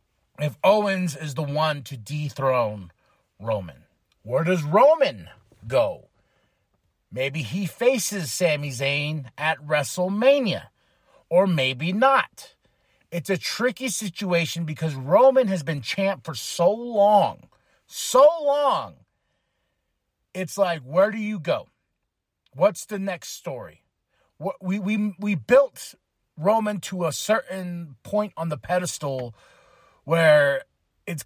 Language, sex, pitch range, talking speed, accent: English, male, 150-200 Hz, 115 wpm, American